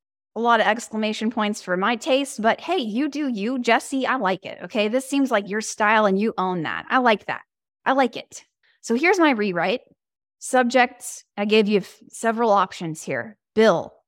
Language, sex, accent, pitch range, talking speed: English, female, American, 195-255 Hz, 190 wpm